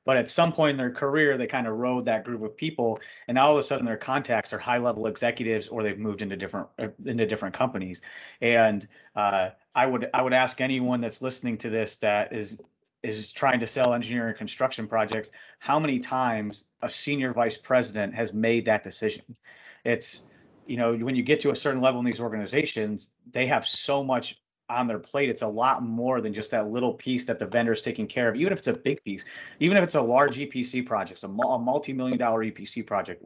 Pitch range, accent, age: 110-130 Hz, American, 30-49